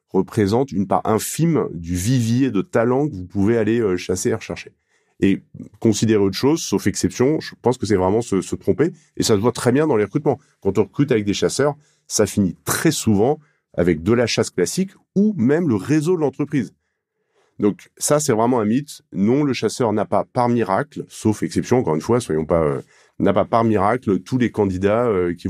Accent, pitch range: French, 95-130 Hz